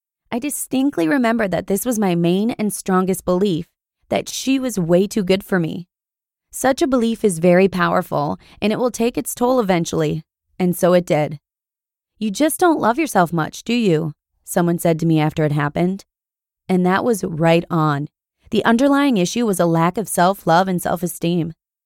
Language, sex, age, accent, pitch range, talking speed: English, female, 20-39, American, 175-225 Hz, 180 wpm